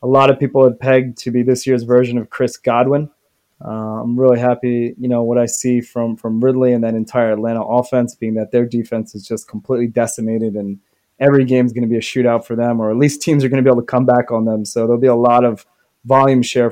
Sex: male